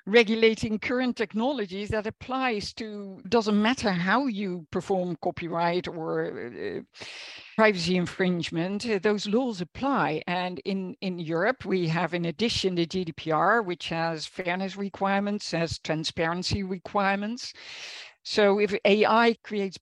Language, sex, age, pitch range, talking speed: English, female, 50-69, 175-215 Hz, 125 wpm